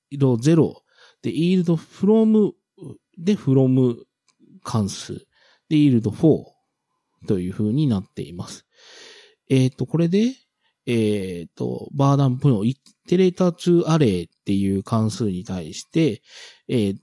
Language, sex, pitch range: Japanese, male, 110-180 Hz